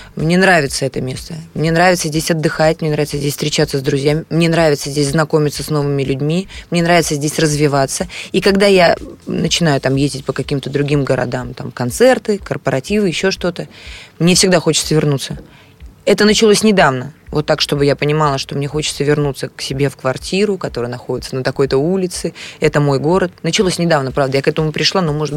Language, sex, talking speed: Russian, female, 180 wpm